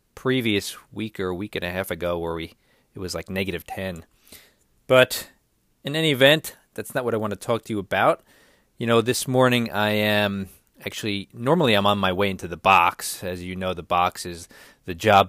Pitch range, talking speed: 90-110 Hz, 205 wpm